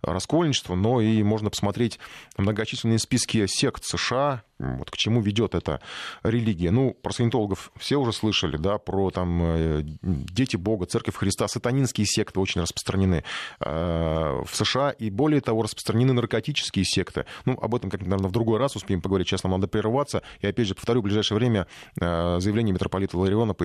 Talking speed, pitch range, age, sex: 165 wpm, 95-120 Hz, 20-39, male